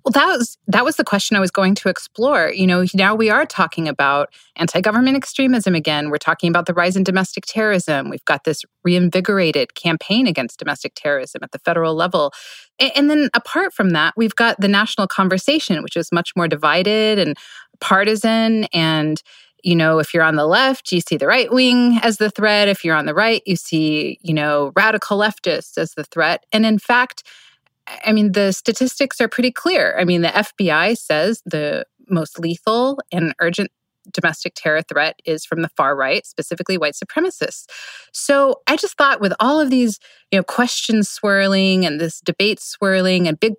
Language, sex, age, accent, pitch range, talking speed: English, female, 30-49, American, 165-220 Hz, 190 wpm